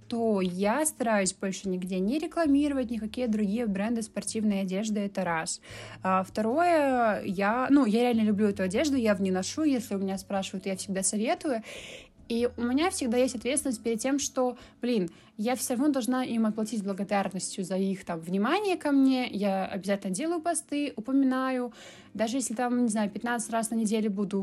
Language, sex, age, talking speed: Russian, female, 20-39, 175 wpm